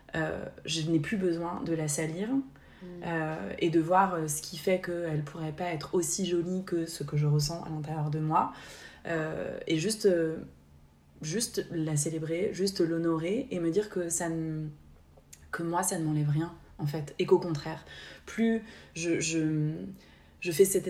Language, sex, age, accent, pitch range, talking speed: French, female, 20-39, French, 155-185 Hz, 180 wpm